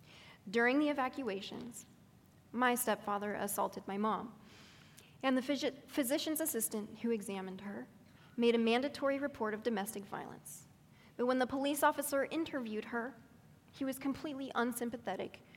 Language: English